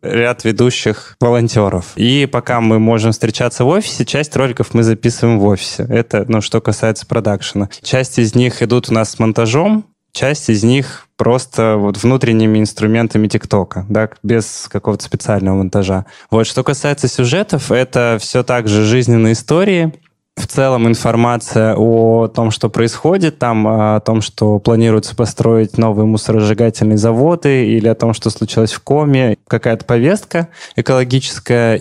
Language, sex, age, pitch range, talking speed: Russian, male, 20-39, 110-130 Hz, 145 wpm